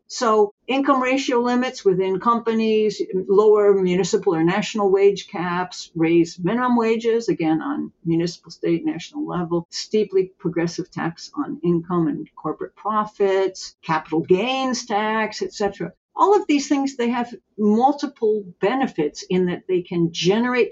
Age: 60-79